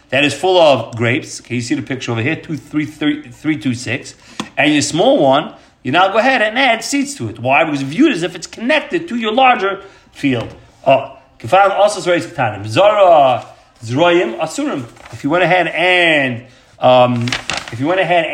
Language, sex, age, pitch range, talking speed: English, male, 40-59, 125-180 Hz, 195 wpm